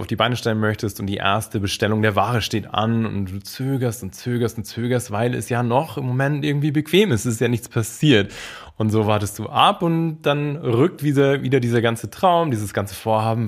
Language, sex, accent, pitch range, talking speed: German, male, German, 105-135 Hz, 225 wpm